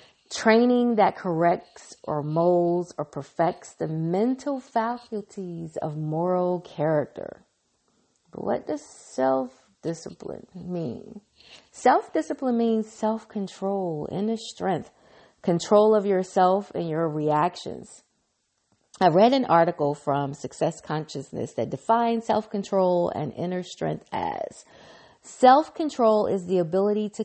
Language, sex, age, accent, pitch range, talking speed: English, female, 30-49, American, 170-225 Hz, 105 wpm